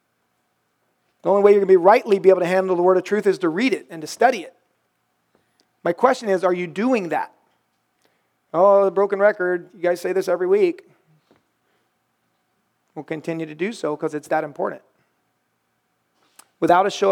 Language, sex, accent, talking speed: English, male, American, 185 wpm